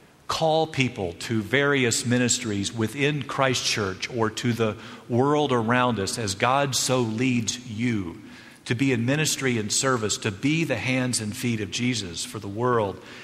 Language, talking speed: English, 165 wpm